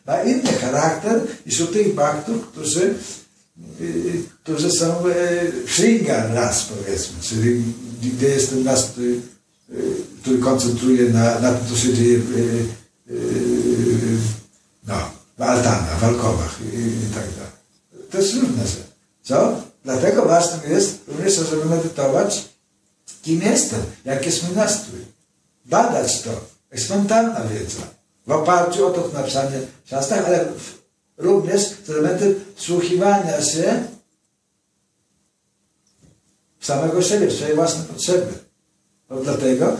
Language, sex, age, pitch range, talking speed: Polish, male, 60-79, 120-175 Hz, 125 wpm